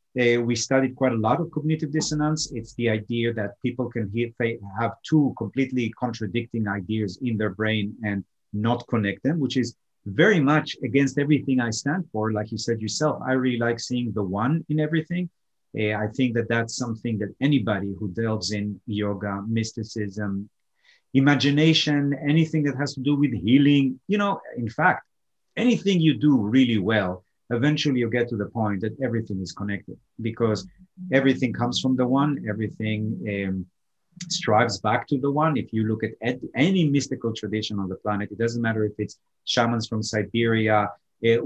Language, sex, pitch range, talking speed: English, male, 110-130 Hz, 175 wpm